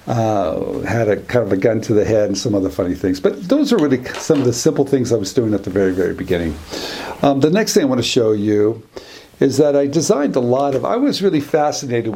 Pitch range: 105-140 Hz